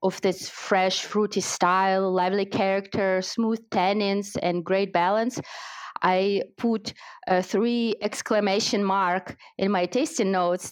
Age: 30-49